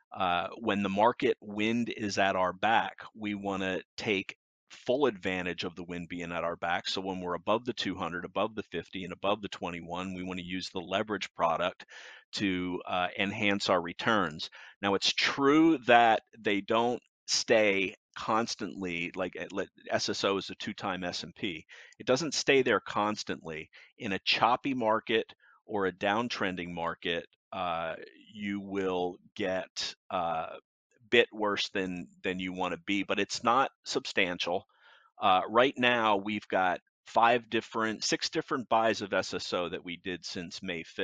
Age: 40-59